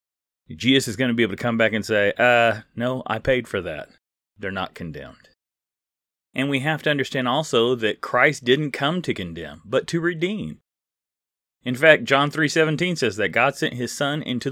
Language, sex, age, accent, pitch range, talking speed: English, male, 30-49, American, 110-155 Hz, 190 wpm